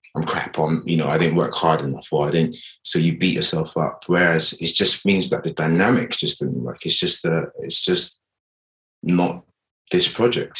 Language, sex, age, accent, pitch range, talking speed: English, male, 20-39, British, 80-90 Hz, 195 wpm